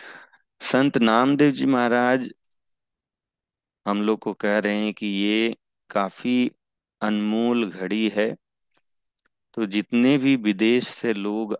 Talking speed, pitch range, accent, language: 115 wpm, 95-115 Hz, native, Hindi